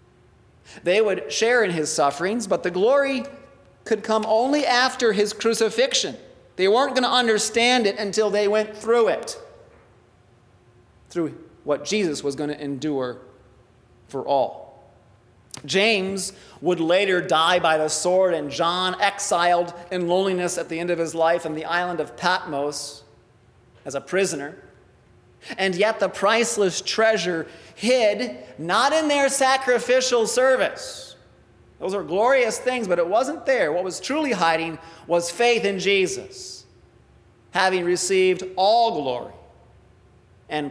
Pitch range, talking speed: 160-230 Hz, 135 wpm